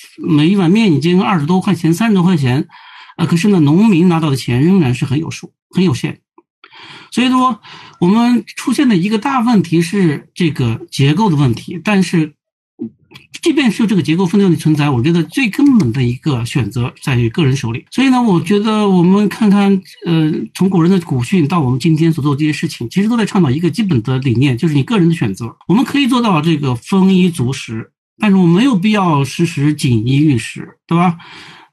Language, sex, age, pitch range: Chinese, male, 60-79, 145-200 Hz